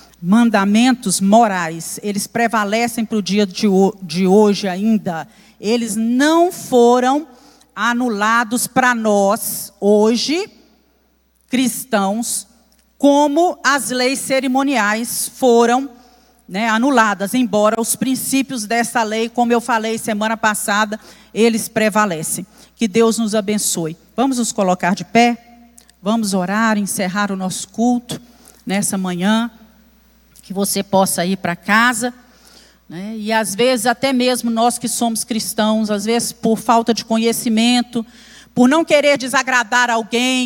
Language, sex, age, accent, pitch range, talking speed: Portuguese, female, 50-69, Brazilian, 215-250 Hz, 120 wpm